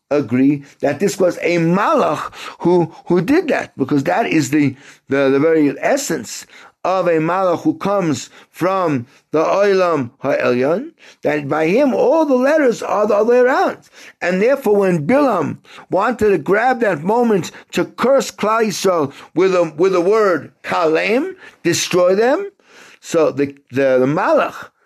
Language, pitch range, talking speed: English, 140-215 Hz, 150 wpm